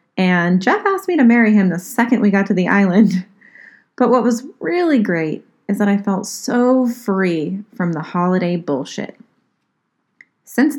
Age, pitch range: 30-49, 180-235 Hz